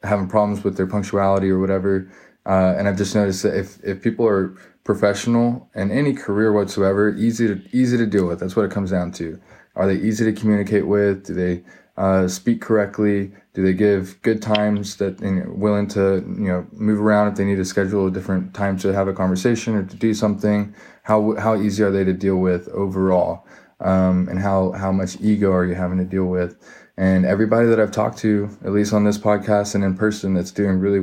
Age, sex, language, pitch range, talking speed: 20-39, male, English, 95-105 Hz, 215 wpm